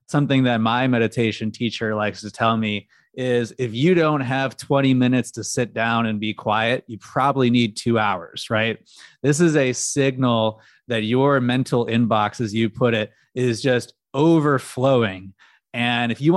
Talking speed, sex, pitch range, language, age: 170 wpm, male, 110-130 Hz, English, 20-39